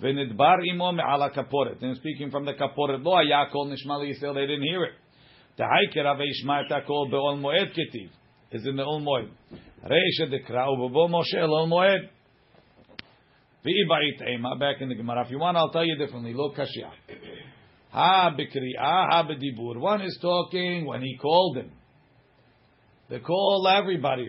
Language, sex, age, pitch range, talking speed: English, male, 50-69, 135-170 Hz, 145 wpm